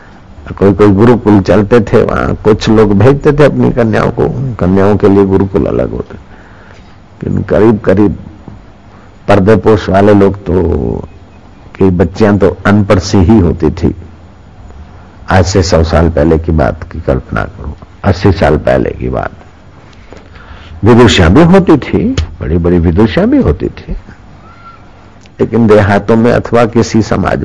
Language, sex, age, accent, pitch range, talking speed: Hindi, male, 60-79, native, 85-110 Hz, 140 wpm